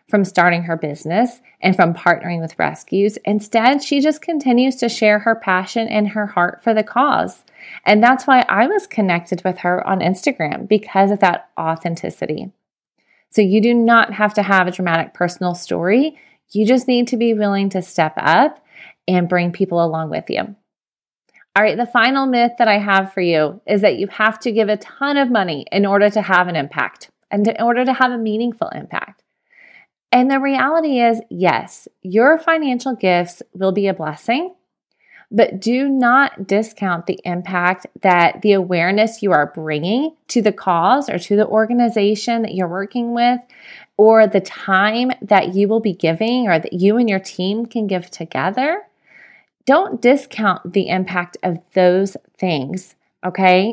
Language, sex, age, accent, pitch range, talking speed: English, female, 30-49, American, 185-240 Hz, 175 wpm